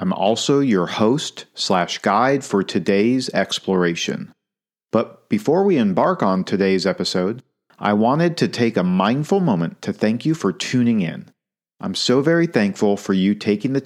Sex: male